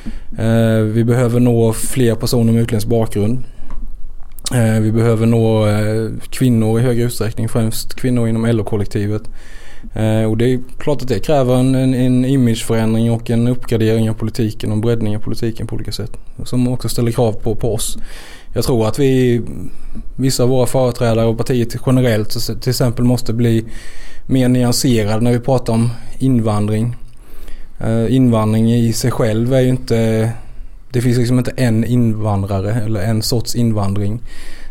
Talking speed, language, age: 150 wpm, Swedish, 20-39